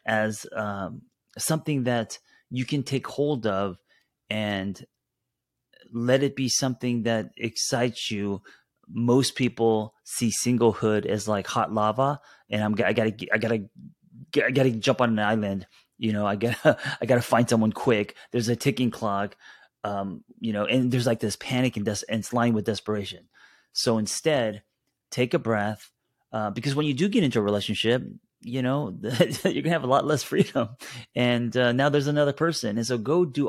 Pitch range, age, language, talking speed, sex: 105-130 Hz, 30-49, English, 180 wpm, male